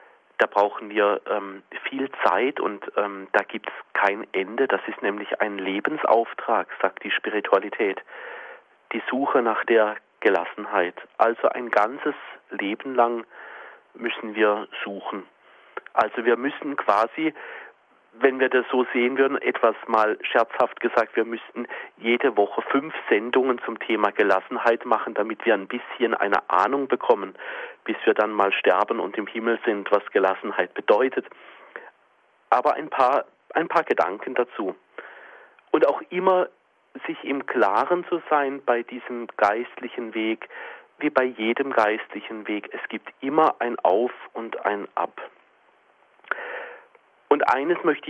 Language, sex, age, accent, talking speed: German, male, 40-59, German, 140 wpm